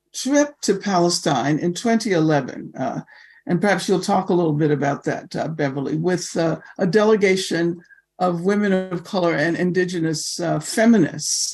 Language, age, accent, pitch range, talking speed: English, 60-79, American, 175-235 Hz, 150 wpm